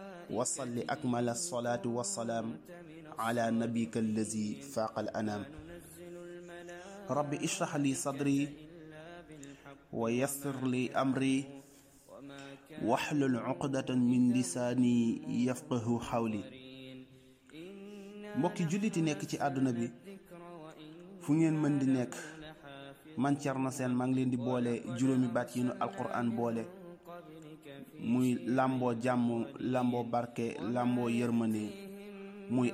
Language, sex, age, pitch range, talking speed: Italian, male, 30-49, 120-155 Hz, 95 wpm